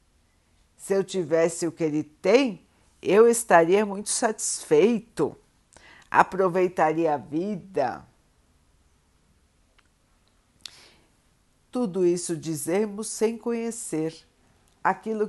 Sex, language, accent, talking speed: female, Portuguese, Brazilian, 80 wpm